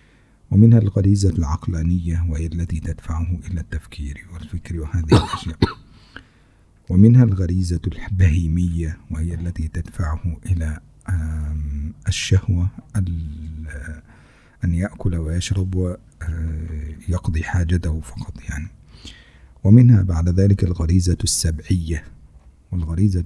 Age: 50-69